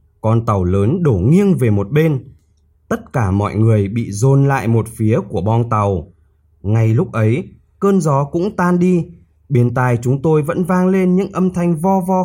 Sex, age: male, 20-39